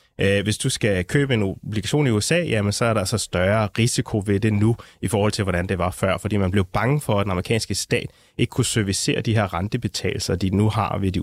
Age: 30-49